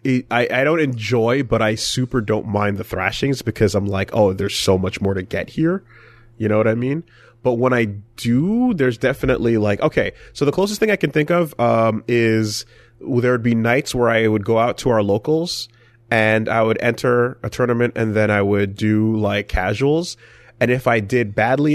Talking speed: 205 wpm